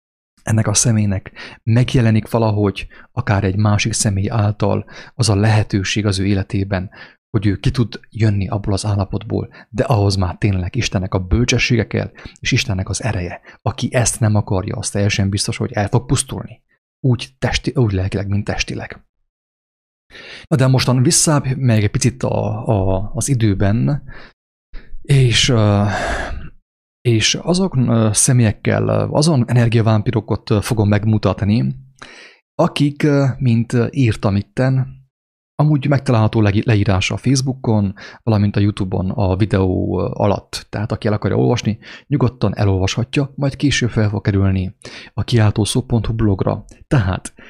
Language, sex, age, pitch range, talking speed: English, male, 30-49, 100-125 Hz, 130 wpm